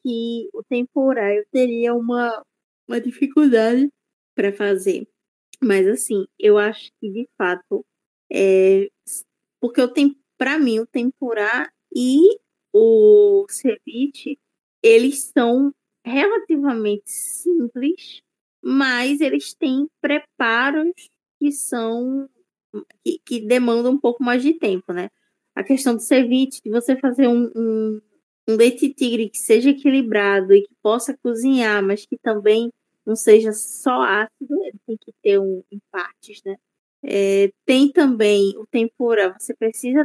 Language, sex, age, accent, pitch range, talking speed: Portuguese, female, 20-39, Brazilian, 205-275 Hz, 125 wpm